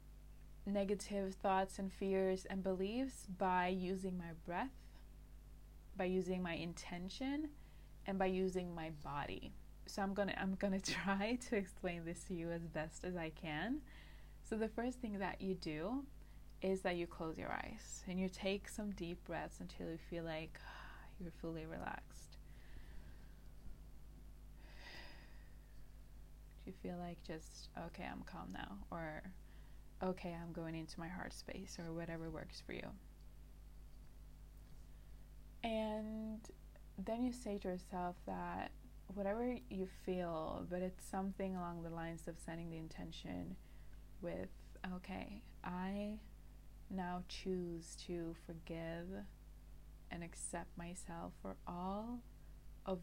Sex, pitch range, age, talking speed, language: female, 165-195 Hz, 20-39, 130 wpm, English